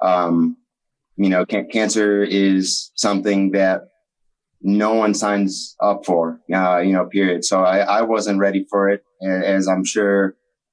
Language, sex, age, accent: English, male, 30-49, American